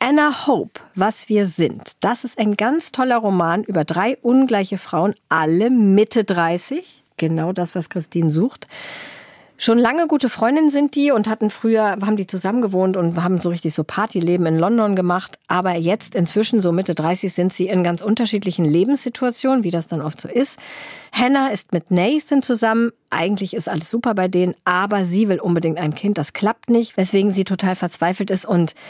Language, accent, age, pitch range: German, German, 50-69, 175-230 Hz